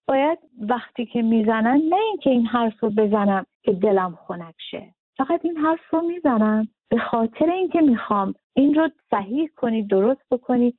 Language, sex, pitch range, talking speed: Arabic, female, 195-255 Hz, 155 wpm